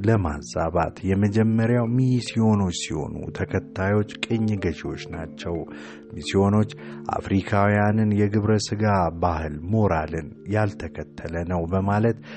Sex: male